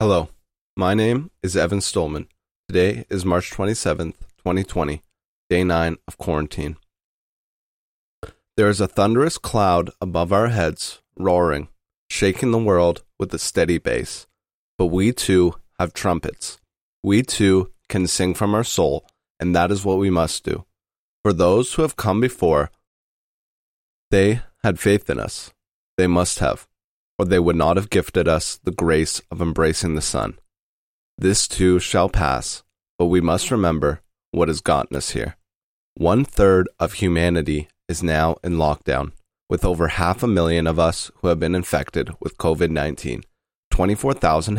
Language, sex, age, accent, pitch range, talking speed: English, male, 30-49, American, 80-100 Hz, 150 wpm